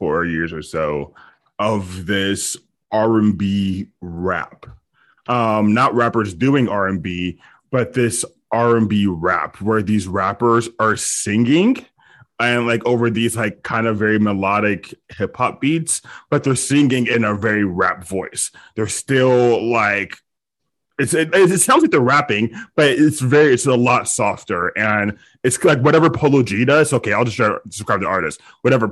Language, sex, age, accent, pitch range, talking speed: English, male, 20-39, American, 100-125 Hz, 150 wpm